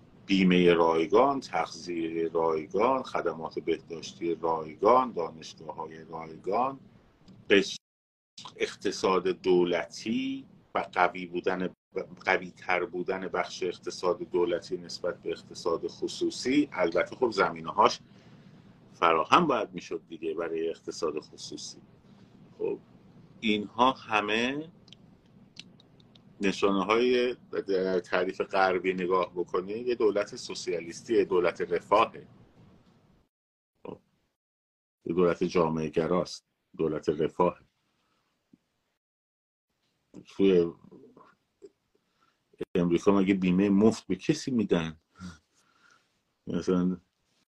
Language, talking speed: Persian, 80 wpm